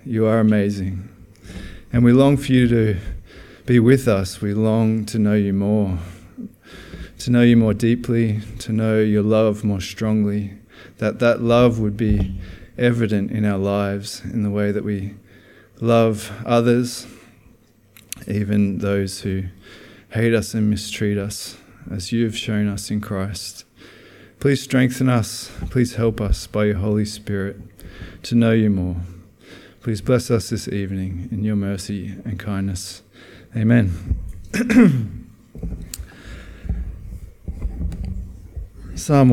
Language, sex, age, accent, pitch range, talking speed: English, male, 20-39, Australian, 95-115 Hz, 130 wpm